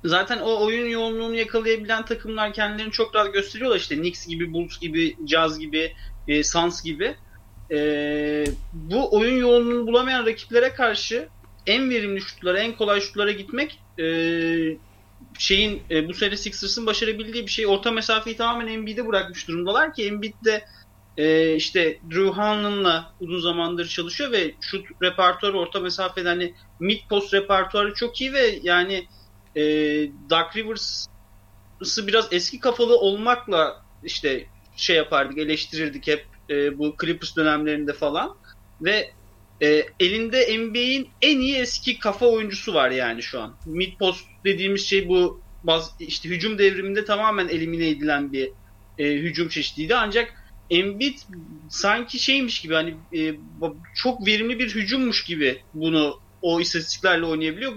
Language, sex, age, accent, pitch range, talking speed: Turkish, male, 30-49, native, 155-220 Hz, 140 wpm